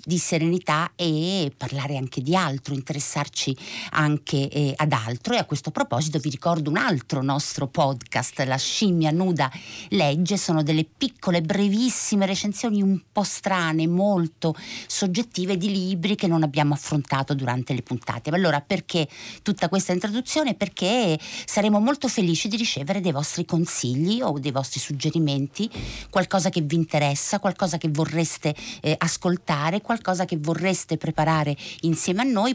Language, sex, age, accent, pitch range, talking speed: Italian, female, 50-69, native, 140-190 Hz, 145 wpm